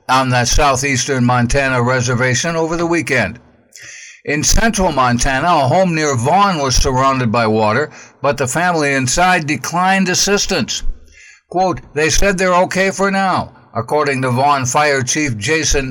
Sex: male